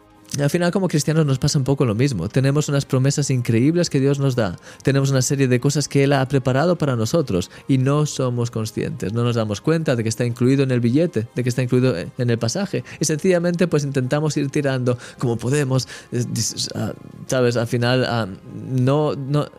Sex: male